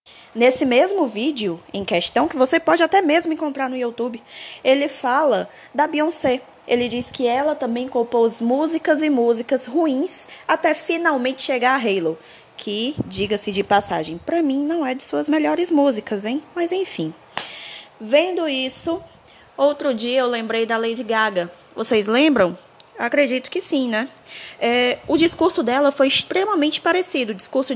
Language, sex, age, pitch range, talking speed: Portuguese, female, 10-29, 225-300 Hz, 155 wpm